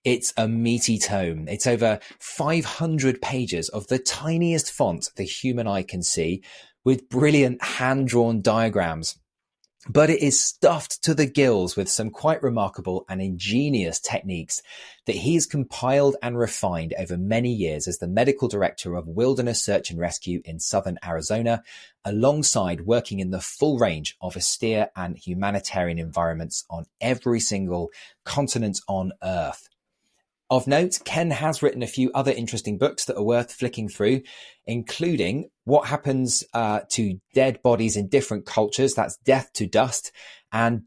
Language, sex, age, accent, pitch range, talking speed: English, male, 30-49, British, 95-130 Hz, 150 wpm